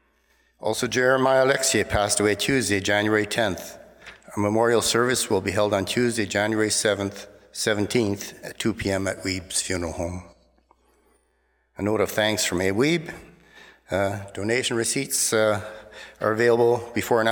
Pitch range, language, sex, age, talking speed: 100-120 Hz, English, male, 60-79, 140 wpm